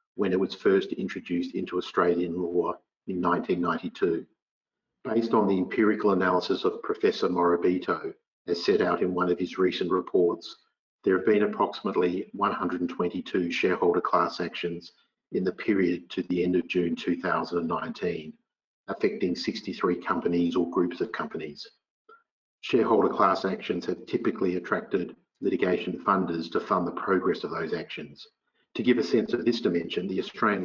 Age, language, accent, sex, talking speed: 50-69, English, Australian, male, 145 wpm